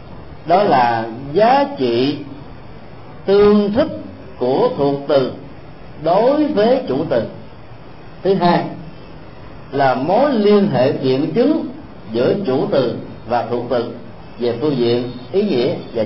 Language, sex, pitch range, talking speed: Vietnamese, male, 125-175 Hz, 125 wpm